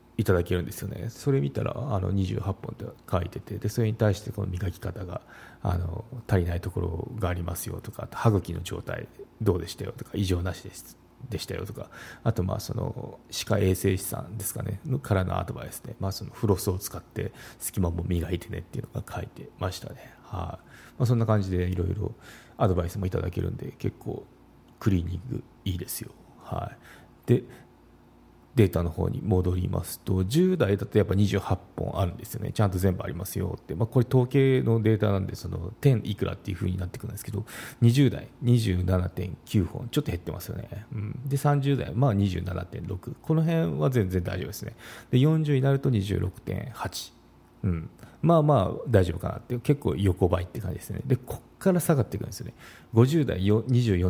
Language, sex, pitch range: Japanese, male, 95-120 Hz